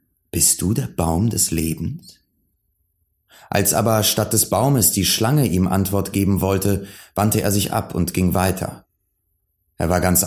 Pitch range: 85-100 Hz